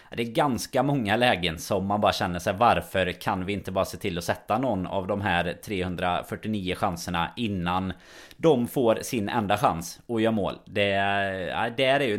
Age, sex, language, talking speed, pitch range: 30-49, male, Swedish, 185 wpm, 90-115 Hz